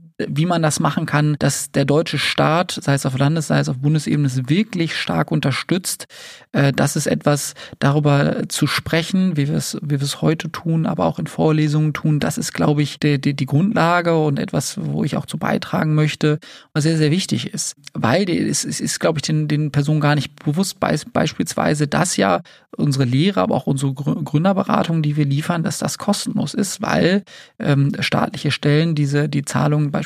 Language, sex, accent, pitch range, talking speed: German, male, German, 145-170 Hz, 195 wpm